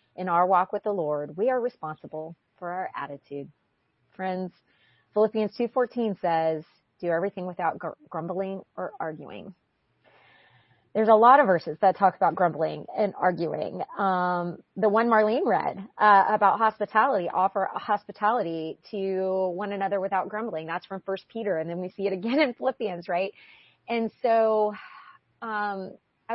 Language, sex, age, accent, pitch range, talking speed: English, female, 30-49, American, 175-220 Hz, 150 wpm